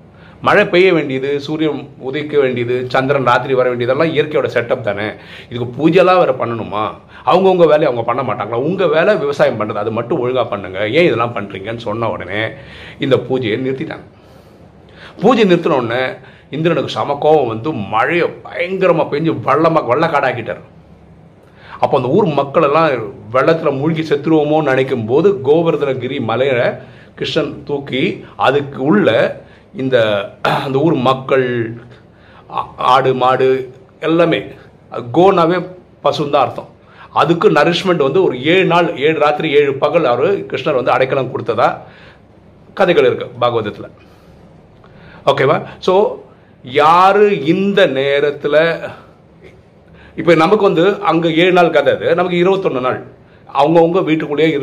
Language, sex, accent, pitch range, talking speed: Tamil, male, native, 125-175 Hz, 125 wpm